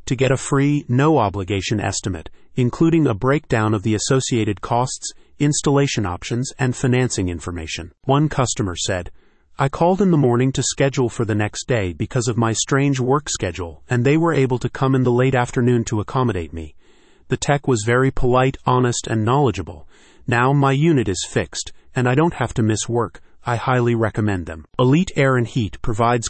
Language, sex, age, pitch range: English, male, 30-49, 110-135 Hz